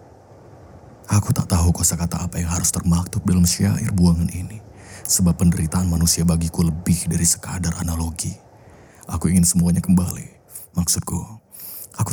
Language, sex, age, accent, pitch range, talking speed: Indonesian, male, 20-39, native, 85-105 Hz, 130 wpm